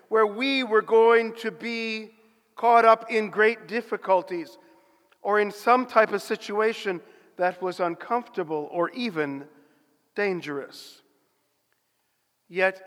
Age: 50-69